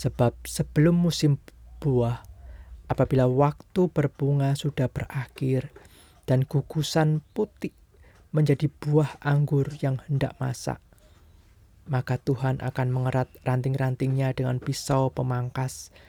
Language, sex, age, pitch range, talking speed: Indonesian, male, 20-39, 120-140 Hz, 95 wpm